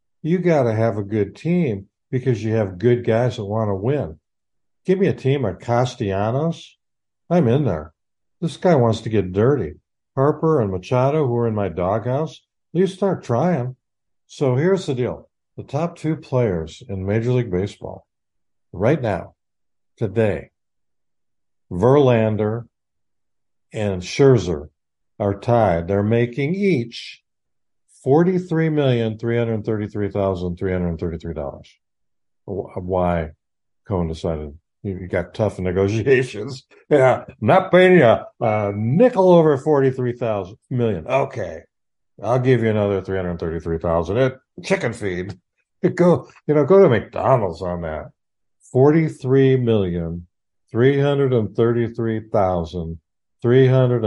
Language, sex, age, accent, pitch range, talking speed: English, male, 60-79, American, 95-135 Hz, 125 wpm